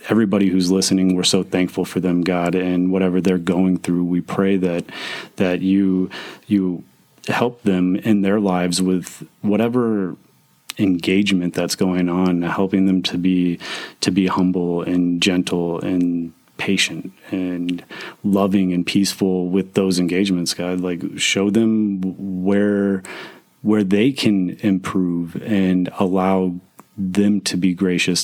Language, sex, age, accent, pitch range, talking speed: English, male, 30-49, American, 90-95 Hz, 135 wpm